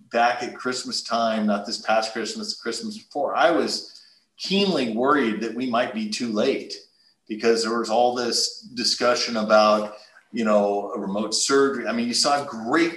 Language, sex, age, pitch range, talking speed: English, male, 40-59, 105-135 Hz, 170 wpm